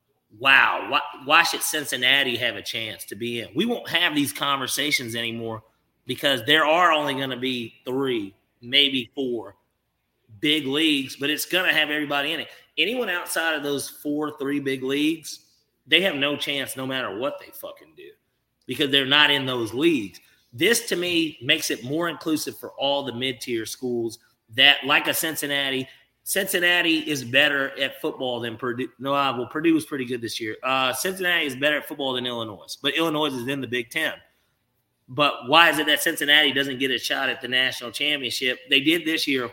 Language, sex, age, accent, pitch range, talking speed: English, male, 30-49, American, 120-150 Hz, 195 wpm